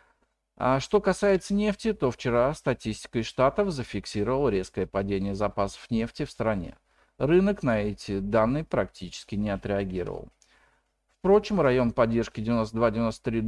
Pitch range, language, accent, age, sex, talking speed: 100-130 Hz, Russian, native, 40-59, male, 115 wpm